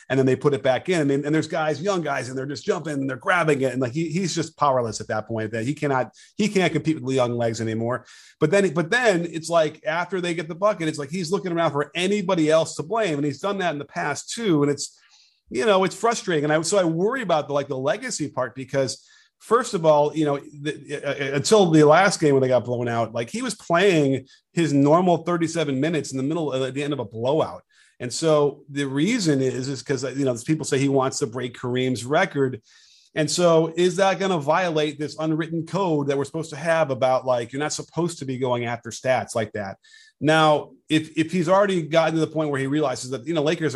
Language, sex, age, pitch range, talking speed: English, male, 40-59, 130-165 Hz, 250 wpm